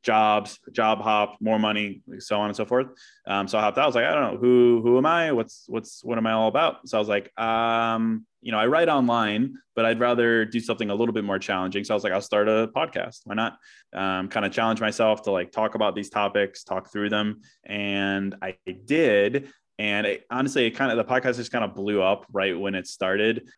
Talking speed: 245 wpm